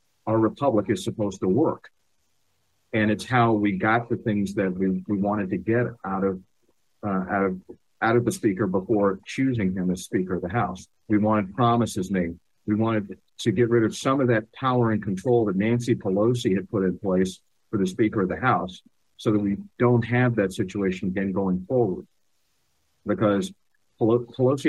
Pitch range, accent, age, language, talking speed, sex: 95-115 Hz, American, 50-69, English, 190 wpm, male